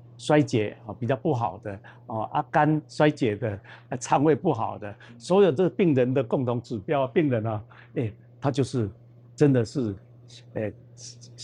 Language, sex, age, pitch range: Chinese, male, 50-69, 115-140 Hz